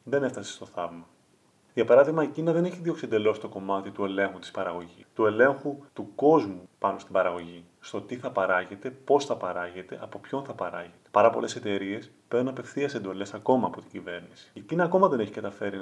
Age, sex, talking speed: 30-49, male, 195 wpm